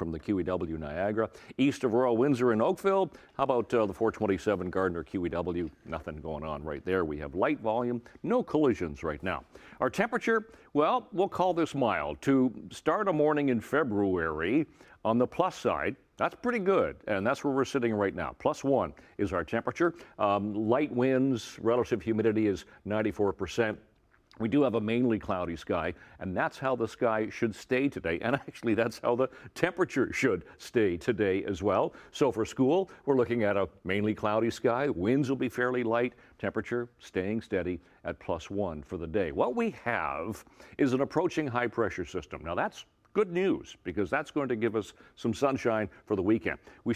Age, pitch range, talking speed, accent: 60-79, 95-135 Hz, 185 wpm, American